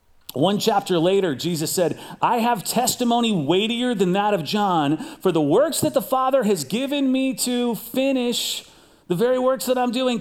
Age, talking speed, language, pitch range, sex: 40-59, 175 wpm, English, 195-270 Hz, male